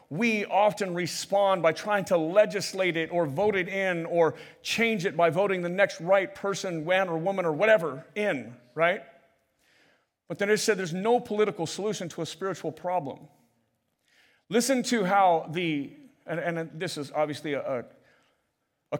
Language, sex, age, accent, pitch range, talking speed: English, male, 40-59, American, 150-195 Hz, 160 wpm